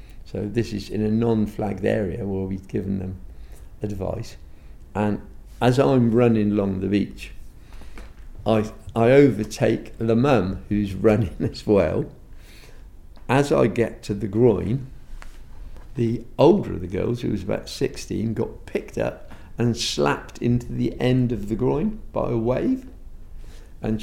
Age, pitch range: 50-69, 105-120 Hz